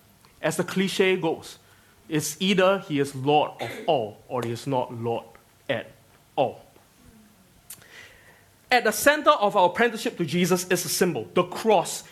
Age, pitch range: 20-39, 155-215 Hz